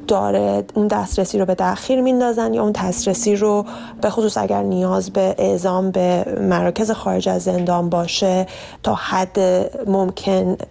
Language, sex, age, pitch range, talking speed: Persian, female, 30-49, 175-200 Hz, 145 wpm